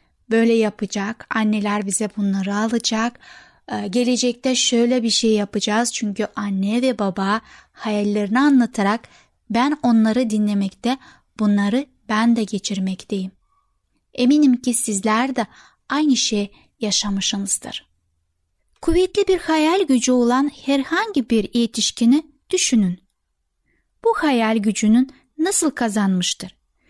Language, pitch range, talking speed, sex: Turkish, 210-270 Hz, 100 wpm, female